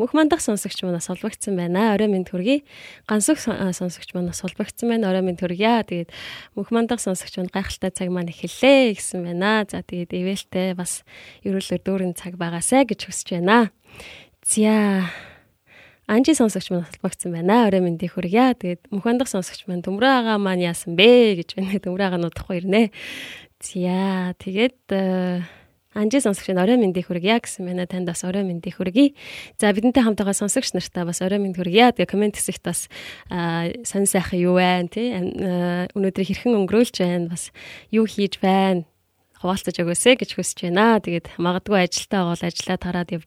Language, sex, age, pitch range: Korean, female, 20-39, 180-215 Hz